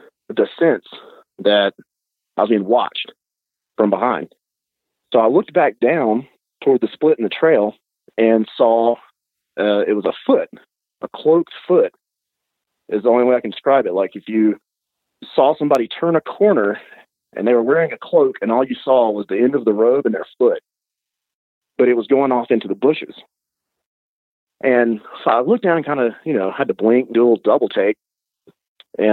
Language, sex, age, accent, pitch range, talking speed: English, male, 40-59, American, 105-135 Hz, 185 wpm